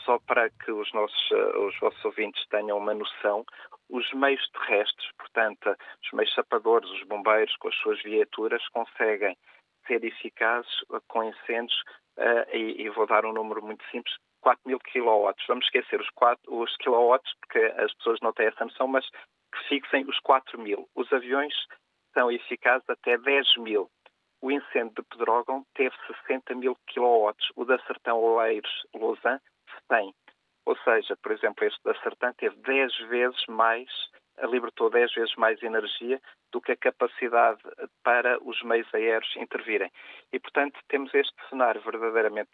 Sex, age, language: male, 40-59, Portuguese